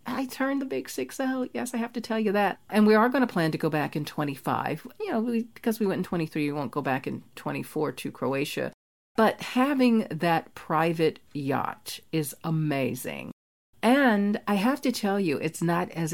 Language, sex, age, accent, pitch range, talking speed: English, female, 40-59, American, 155-205 Hz, 200 wpm